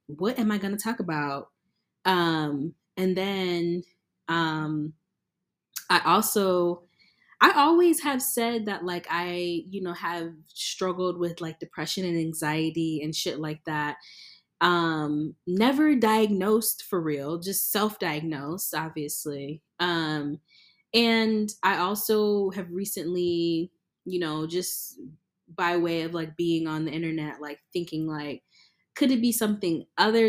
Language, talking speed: English, 130 wpm